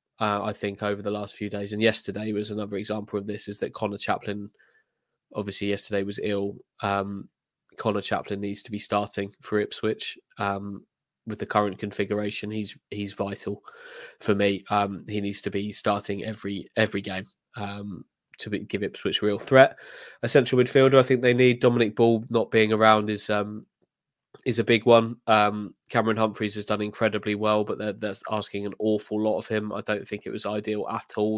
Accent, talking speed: British, 195 wpm